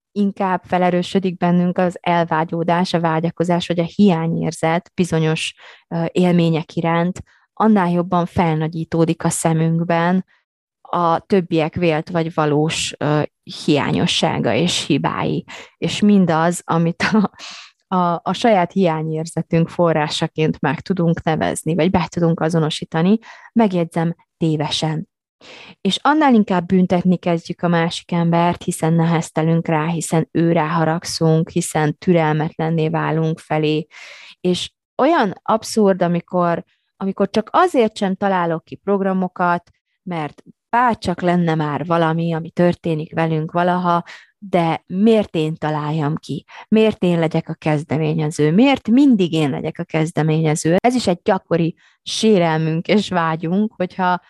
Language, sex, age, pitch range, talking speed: Hungarian, female, 20-39, 160-185 Hz, 115 wpm